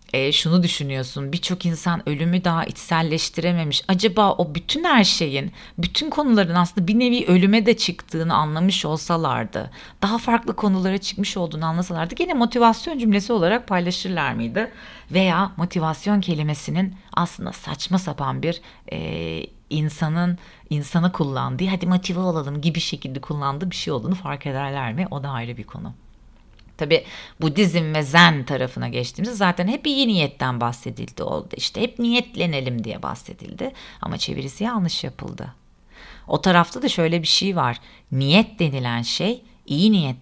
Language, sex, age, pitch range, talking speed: Turkish, female, 40-59, 140-195 Hz, 145 wpm